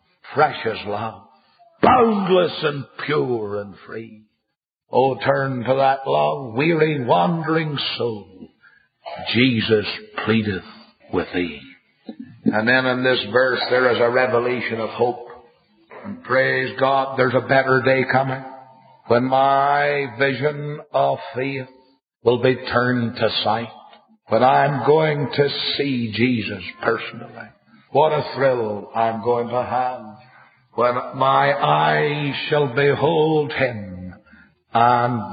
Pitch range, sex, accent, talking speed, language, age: 115-140 Hz, male, American, 120 wpm, English, 50-69